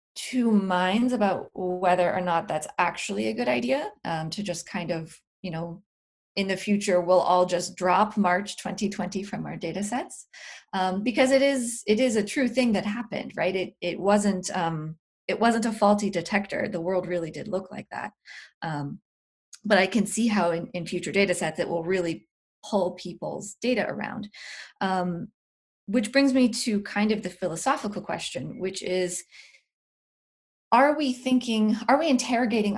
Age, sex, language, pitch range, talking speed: 20-39, female, English, 180-215 Hz, 175 wpm